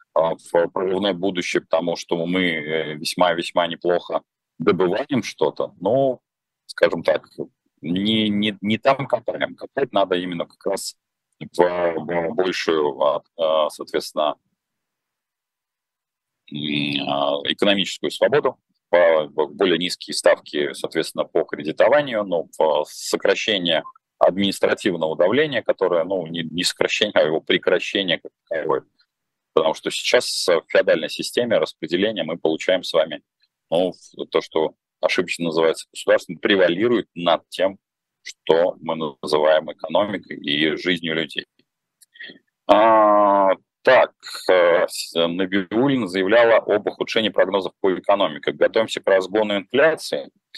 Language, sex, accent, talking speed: Russian, male, native, 100 wpm